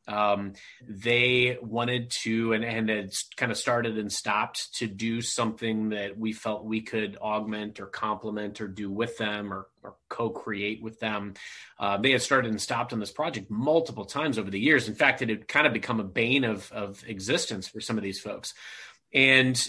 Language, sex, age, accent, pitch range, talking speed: English, male, 30-49, American, 110-130 Hz, 195 wpm